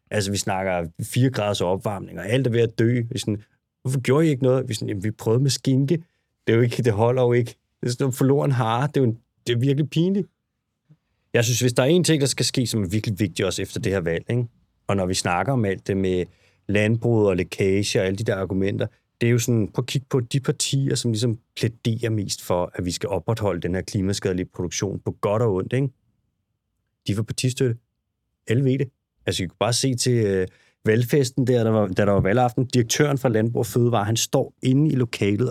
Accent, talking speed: native, 240 wpm